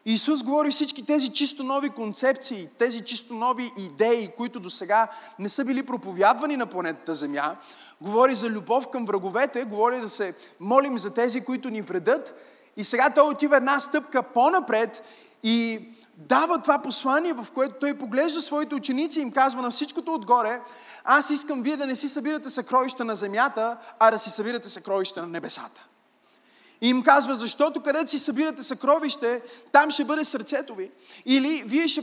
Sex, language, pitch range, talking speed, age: male, Bulgarian, 230-290 Hz, 170 wpm, 30-49